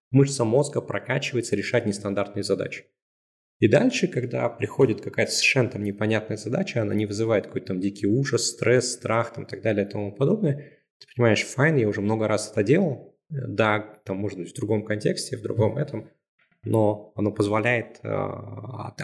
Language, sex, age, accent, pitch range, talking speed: Russian, male, 20-39, native, 100-125 Hz, 165 wpm